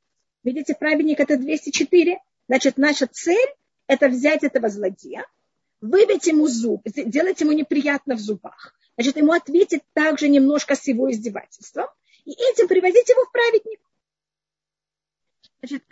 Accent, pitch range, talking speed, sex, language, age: native, 265-320 Hz, 130 wpm, female, Russian, 40-59